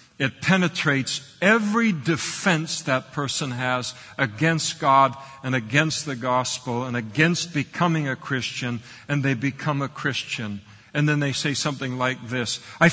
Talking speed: 145 wpm